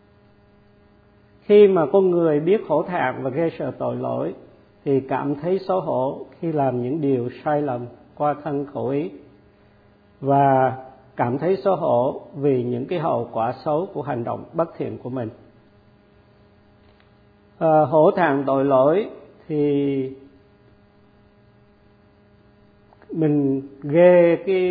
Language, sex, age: Vietnamese, male, 50-69